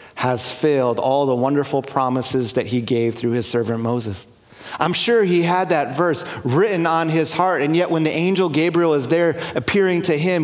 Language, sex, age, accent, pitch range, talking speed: English, male, 30-49, American, 125-165 Hz, 195 wpm